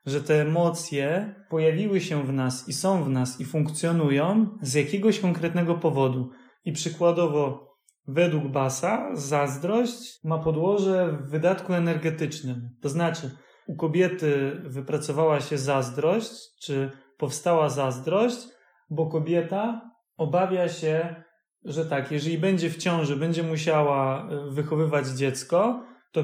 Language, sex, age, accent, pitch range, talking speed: Polish, male, 30-49, native, 145-175 Hz, 120 wpm